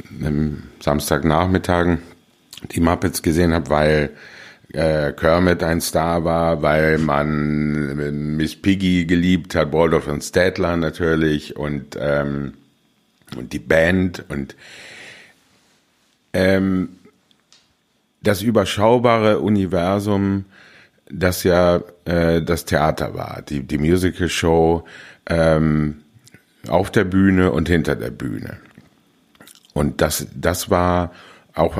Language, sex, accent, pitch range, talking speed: German, male, German, 80-95 Hz, 105 wpm